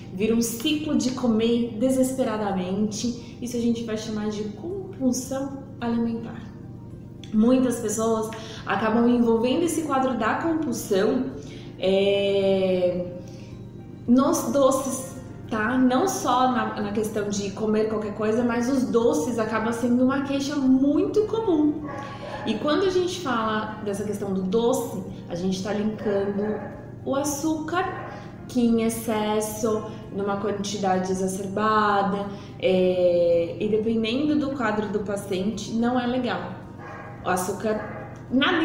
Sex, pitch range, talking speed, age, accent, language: female, 205-260 Hz, 120 wpm, 20-39, Brazilian, Portuguese